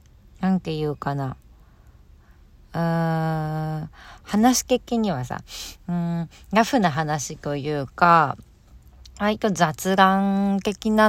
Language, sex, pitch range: Japanese, female, 155-225 Hz